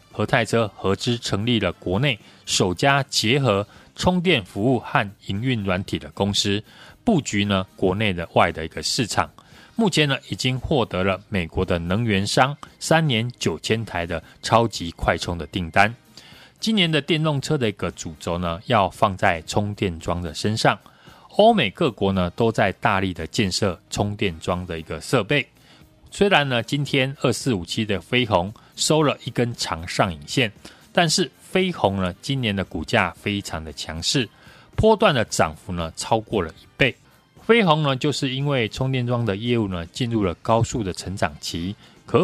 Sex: male